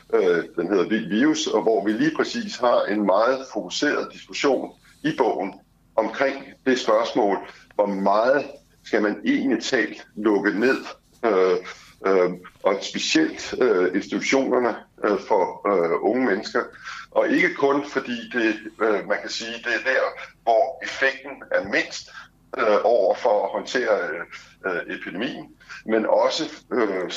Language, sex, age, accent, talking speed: Danish, male, 60-79, native, 130 wpm